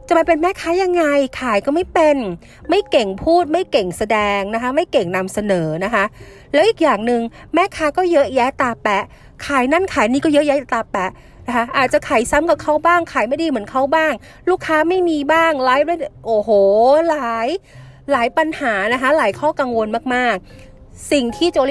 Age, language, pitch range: 30-49, Thai, 195-290 Hz